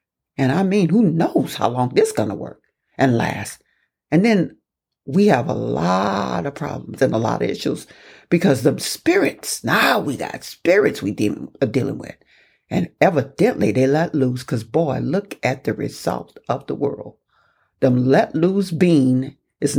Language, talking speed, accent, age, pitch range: English, 175 wpm, American, 60-79, 140-180 Hz